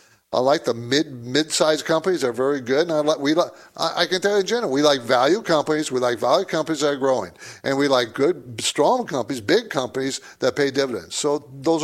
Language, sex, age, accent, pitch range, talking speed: English, male, 60-79, American, 130-180 Hz, 225 wpm